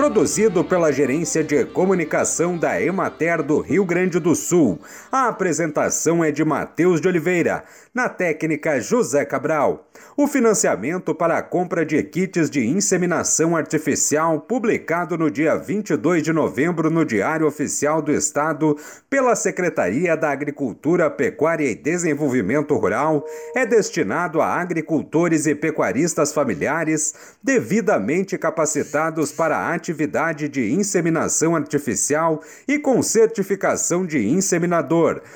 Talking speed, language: 120 wpm, Portuguese